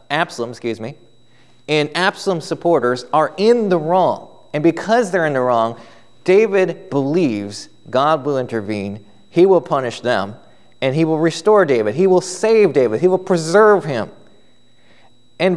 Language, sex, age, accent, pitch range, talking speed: English, male, 30-49, American, 125-175 Hz, 150 wpm